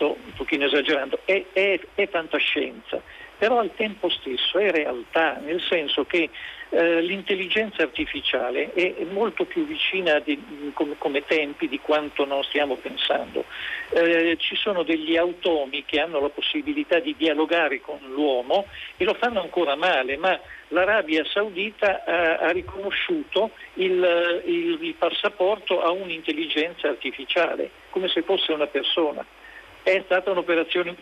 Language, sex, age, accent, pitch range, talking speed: Italian, male, 50-69, native, 160-210 Hz, 140 wpm